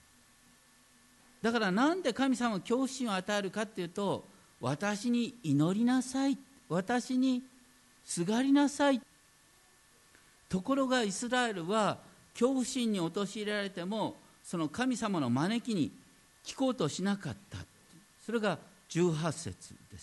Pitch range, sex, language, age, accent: 170-255 Hz, male, Japanese, 50-69, native